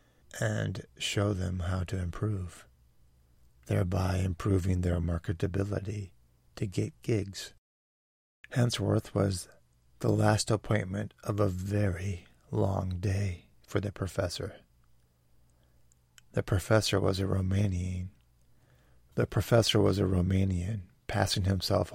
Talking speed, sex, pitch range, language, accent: 105 wpm, male, 90-105 Hz, English, American